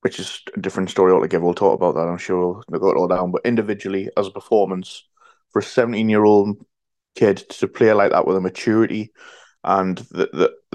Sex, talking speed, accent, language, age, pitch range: male, 230 wpm, British, English, 20-39, 100-125 Hz